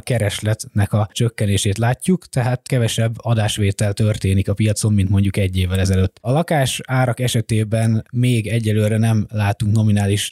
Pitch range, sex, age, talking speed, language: 105-125 Hz, male, 20-39, 140 wpm, Hungarian